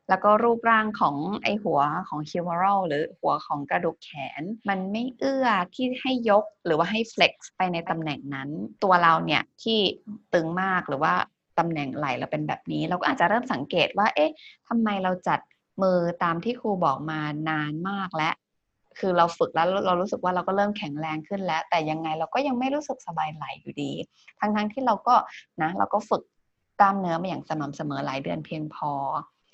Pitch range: 165-225 Hz